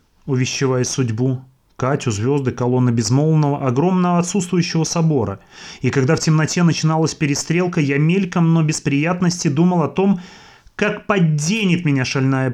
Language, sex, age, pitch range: Russian, male, 30-49, 130-170 Hz